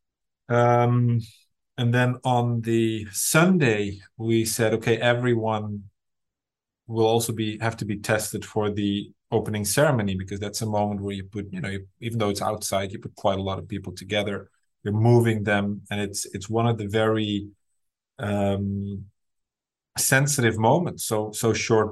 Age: 30-49